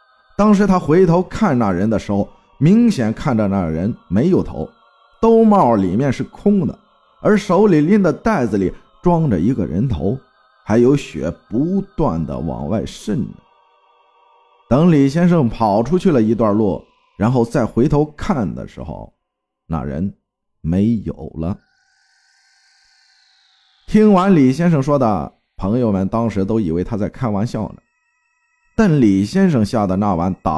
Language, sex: Chinese, male